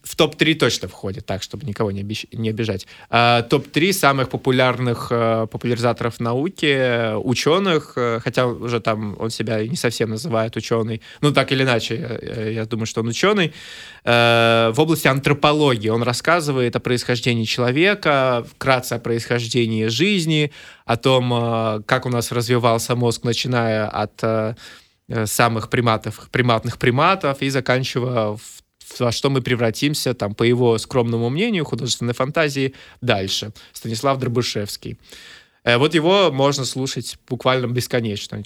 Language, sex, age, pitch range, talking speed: Russian, male, 20-39, 115-140 Hz, 130 wpm